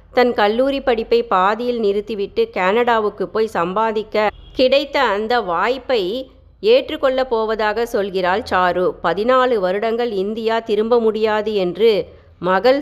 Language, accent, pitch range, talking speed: Tamil, native, 195-250 Hz, 105 wpm